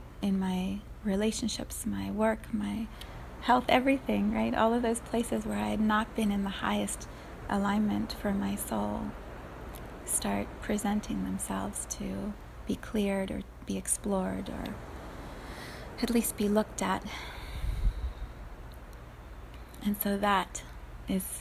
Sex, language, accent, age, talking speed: female, English, American, 30-49, 125 wpm